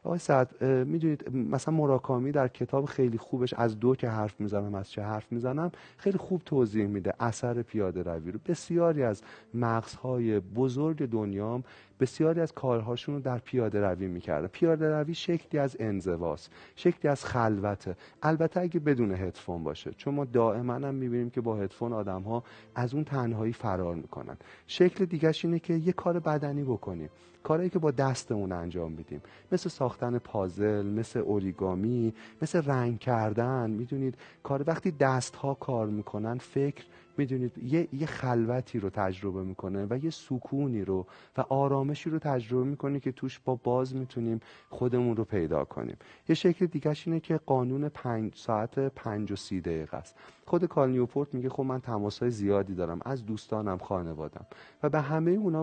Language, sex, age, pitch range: Persian, male, 40-59, 105-145 Hz